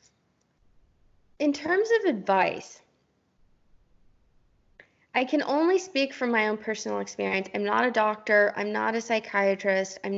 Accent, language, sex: American, English, female